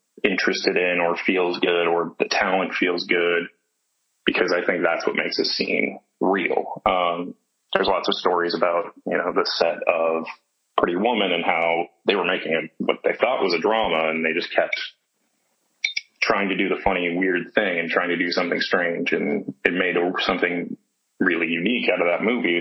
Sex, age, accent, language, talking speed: male, 20-39, American, English, 195 wpm